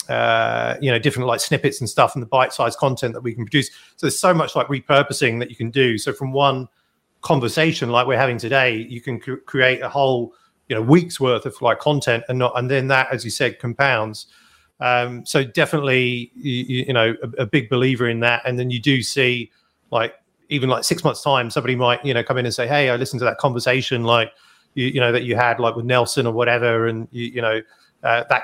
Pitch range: 115-135 Hz